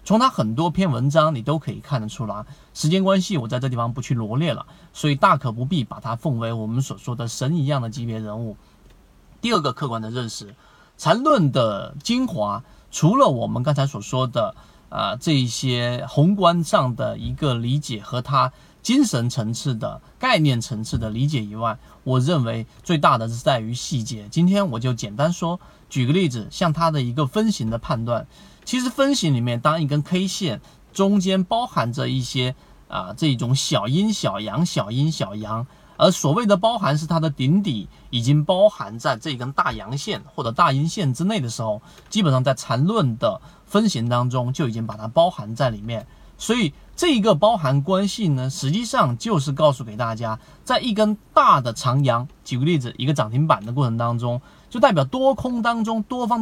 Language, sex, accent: Chinese, male, native